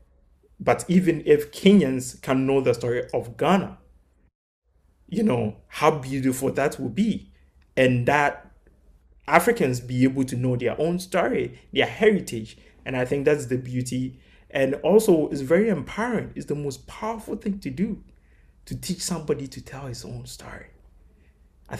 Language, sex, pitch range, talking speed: English, male, 120-170 Hz, 155 wpm